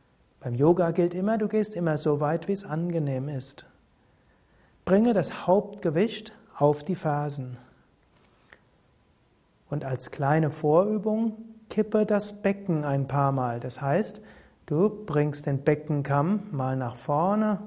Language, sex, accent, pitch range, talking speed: German, male, German, 140-200 Hz, 130 wpm